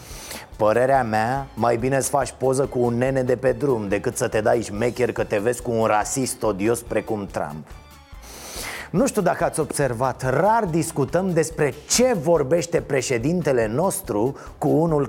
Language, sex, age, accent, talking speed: Romanian, male, 30-49, native, 165 wpm